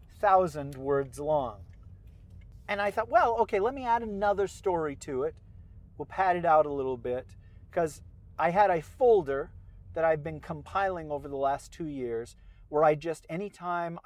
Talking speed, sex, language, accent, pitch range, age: 170 wpm, male, English, American, 115-165 Hz, 40-59